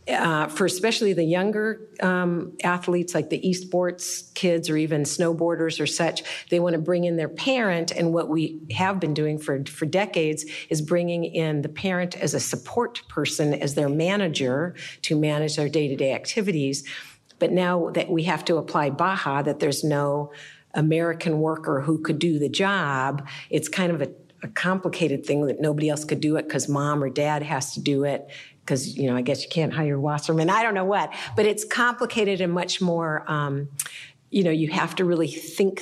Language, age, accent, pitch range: English, 50-69, American, 150-180 Hz